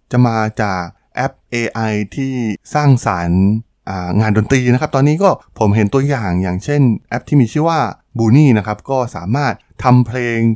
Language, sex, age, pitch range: Thai, male, 20-39, 100-130 Hz